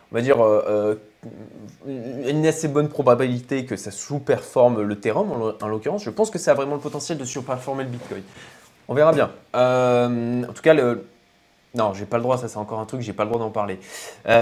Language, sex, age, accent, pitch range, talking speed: French, male, 20-39, French, 110-140 Hz, 215 wpm